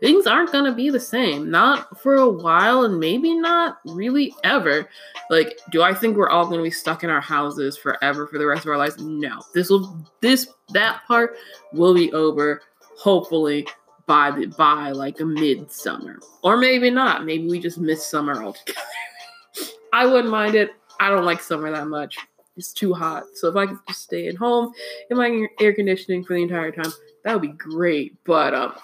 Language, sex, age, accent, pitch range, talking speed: English, female, 20-39, American, 155-225 Hz, 200 wpm